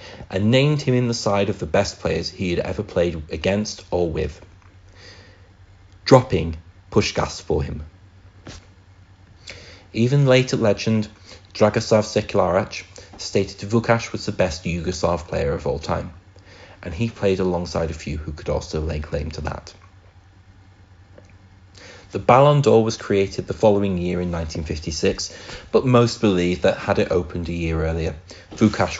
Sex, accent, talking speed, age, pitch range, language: male, British, 145 wpm, 30-49, 90-110 Hz, English